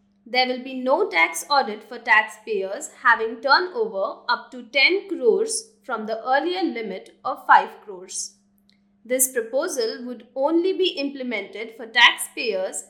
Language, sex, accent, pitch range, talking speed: English, female, Indian, 215-330 Hz, 135 wpm